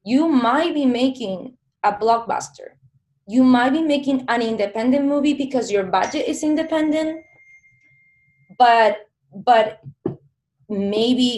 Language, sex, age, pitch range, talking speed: English, female, 20-39, 175-230 Hz, 110 wpm